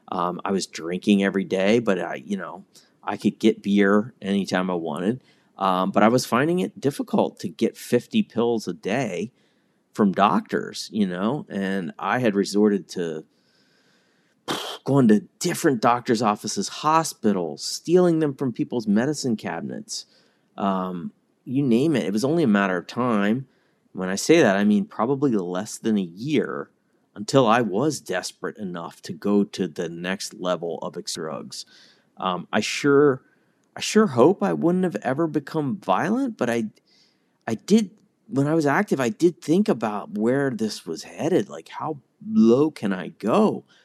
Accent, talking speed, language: American, 165 wpm, English